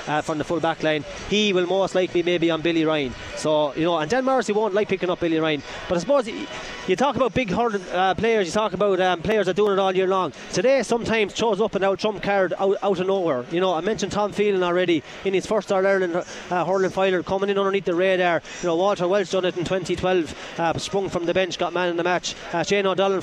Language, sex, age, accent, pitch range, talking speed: English, male, 30-49, Irish, 170-205 Hz, 260 wpm